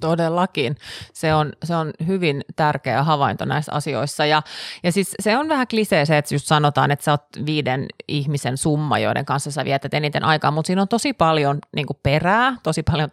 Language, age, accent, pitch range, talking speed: Finnish, 30-49, native, 145-185 Hz, 190 wpm